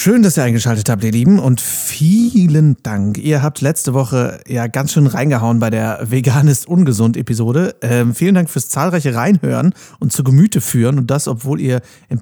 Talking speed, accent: 175 wpm, German